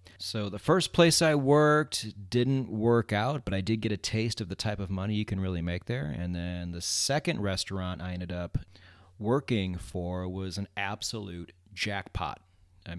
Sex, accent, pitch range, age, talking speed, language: male, American, 95-125 Hz, 30-49, 185 wpm, English